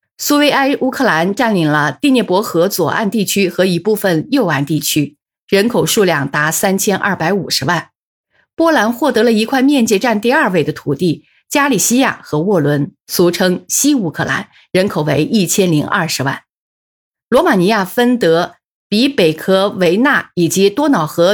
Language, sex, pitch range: Chinese, female, 165-240 Hz